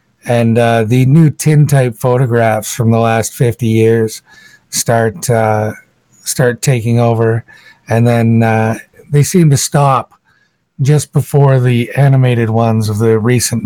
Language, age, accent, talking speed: English, 60-79, American, 135 wpm